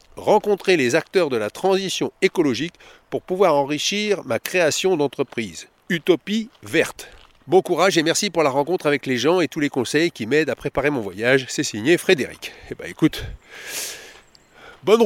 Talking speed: 175 wpm